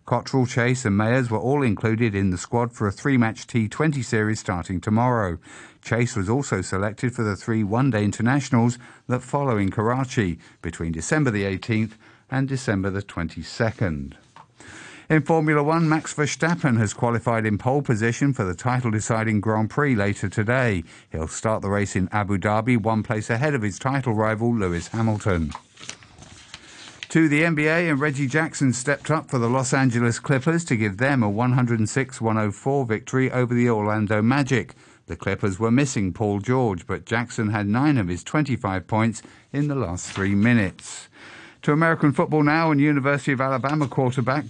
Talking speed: 165 wpm